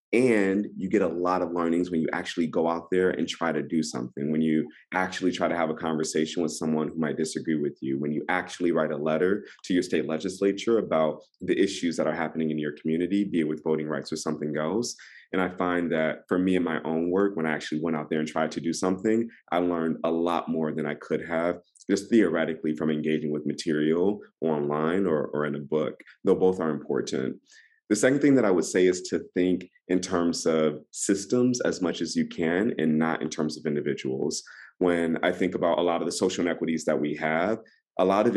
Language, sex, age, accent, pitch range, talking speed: English, male, 30-49, American, 80-90 Hz, 230 wpm